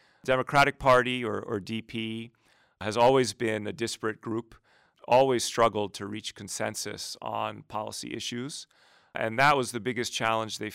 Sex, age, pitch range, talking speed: male, 40-59, 105-125 Hz, 145 wpm